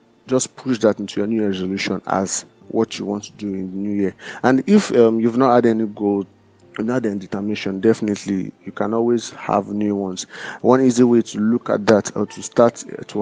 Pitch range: 100-115 Hz